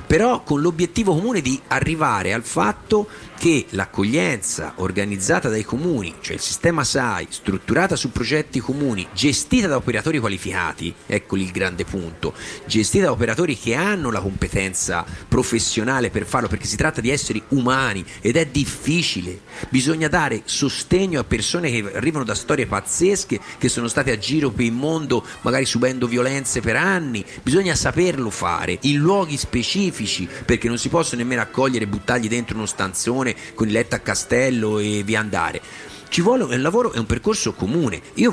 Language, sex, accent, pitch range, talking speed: Italian, male, native, 105-155 Hz, 165 wpm